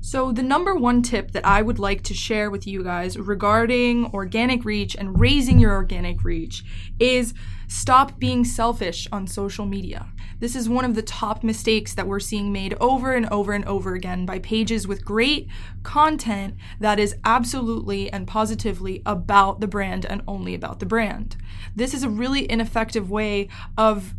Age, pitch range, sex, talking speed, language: 20-39, 175-225 Hz, female, 175 wpm, English